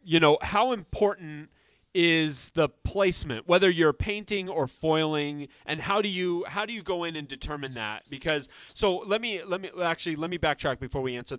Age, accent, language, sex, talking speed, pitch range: 30-49, American, English, male, 195 wpm, 130-175 Hz